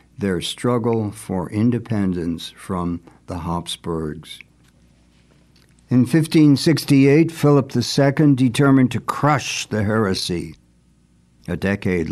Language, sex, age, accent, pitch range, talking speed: English, male, 60-79, American, 95-130 Hz, 90 wpm